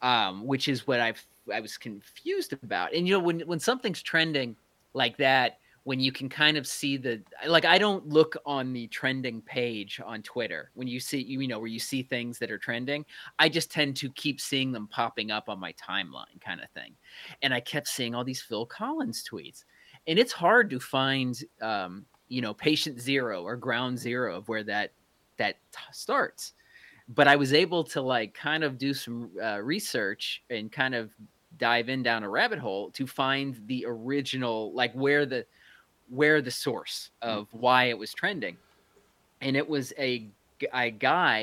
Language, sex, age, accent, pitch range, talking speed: English, male, 30-49, American, 115-145 Hz, 190 wpm